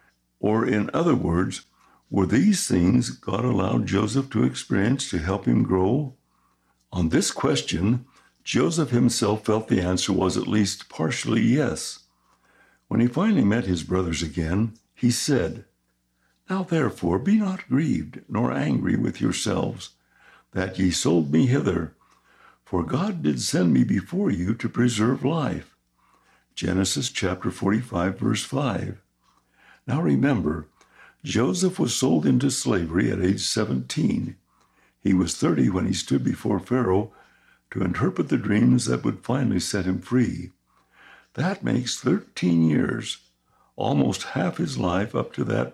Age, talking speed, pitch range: 60-79, 140 wpm, 90-125 Hz